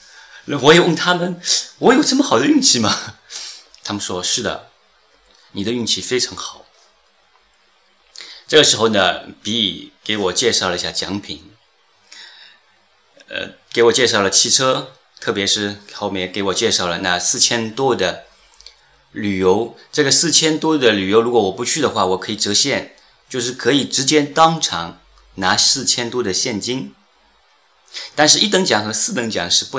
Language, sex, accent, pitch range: Chinese, male, native, 95-135 Hz